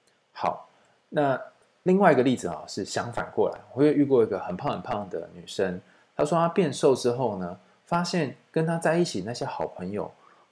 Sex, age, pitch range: male, 20-39, 115-165 Hz